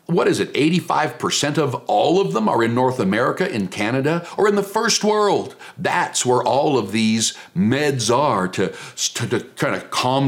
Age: 60-79